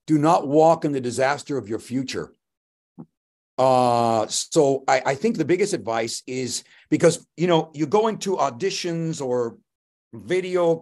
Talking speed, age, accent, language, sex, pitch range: 150 wpm, 50-69, American, English, male, 130-170 Hz